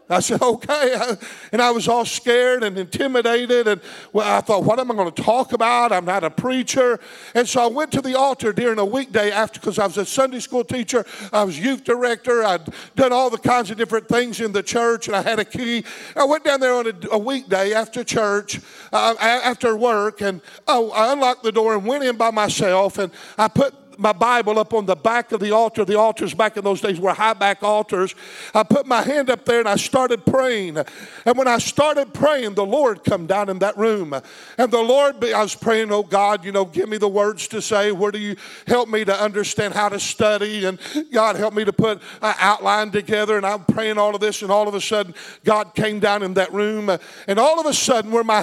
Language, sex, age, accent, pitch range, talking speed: English, male, 50-69, American, 205-240 Hz, 230 wpm